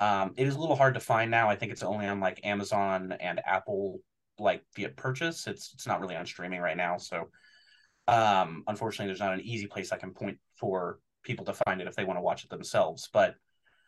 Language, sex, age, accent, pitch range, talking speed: English, male, 30-49, American, 100-115 Hz, 230 wpm